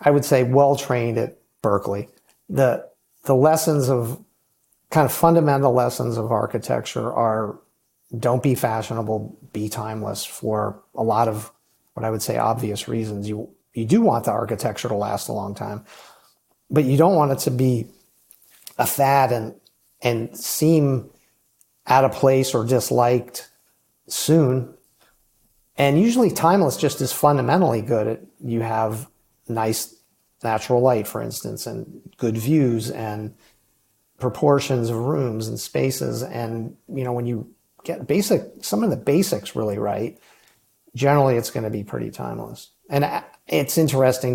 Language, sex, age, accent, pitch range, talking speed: English, male, 50-69, American, 110-135 Hz, 145 wpm